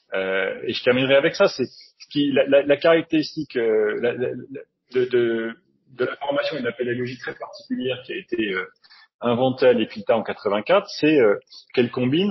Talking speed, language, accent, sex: 195 wpm, French, French, male